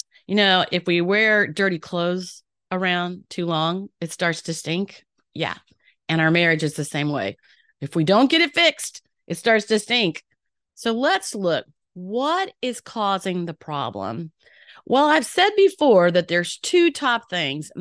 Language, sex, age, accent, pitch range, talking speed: English, female, 40-59, American, 170-250 Hz, 165 wpm